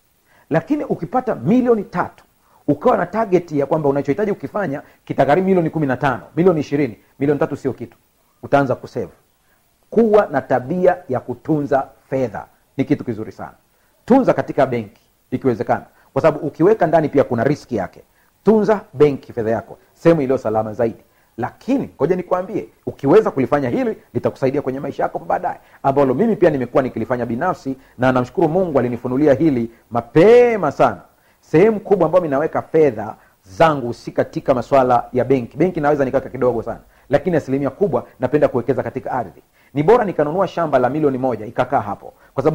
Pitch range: 125-165 Hz